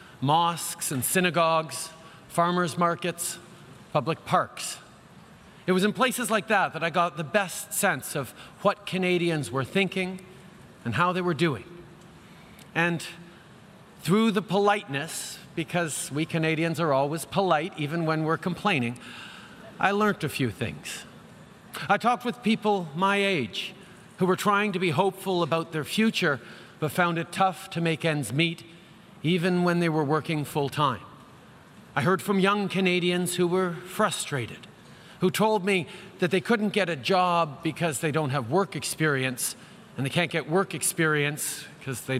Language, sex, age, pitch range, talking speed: English, male, 40-59, 160-195 Hz, 155 wpm